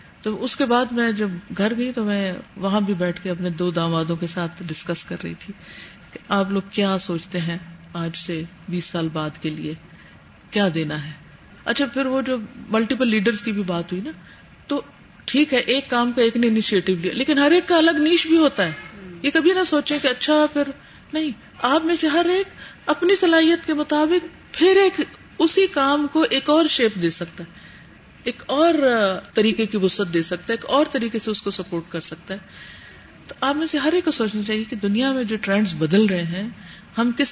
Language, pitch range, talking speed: Urdu, 180-270 Hz, 215 wpm